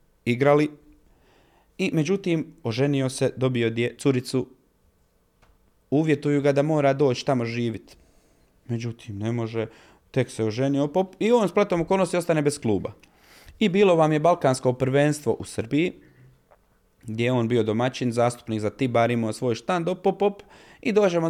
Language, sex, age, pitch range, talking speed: Croatian, male, 30-49, 115-155 Hz, 150 wpm